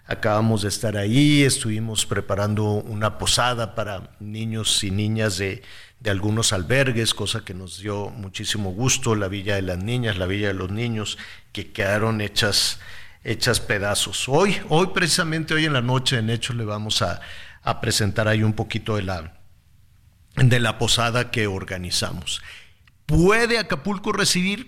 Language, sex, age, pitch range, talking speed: Spanish, male, 50-69, 105-150 Hz, 155 wpm